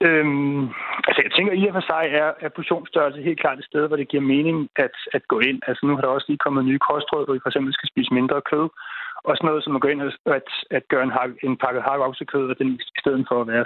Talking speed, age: 270 wpm, 30-49